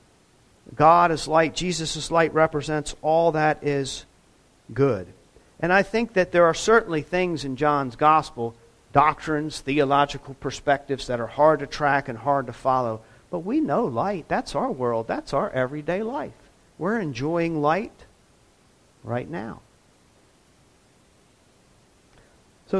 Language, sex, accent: English, male, American